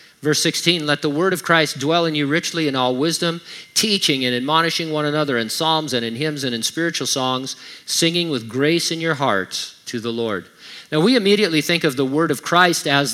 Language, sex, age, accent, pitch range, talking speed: English, male, 50-69, American, 130-165 Hz, 215 wpm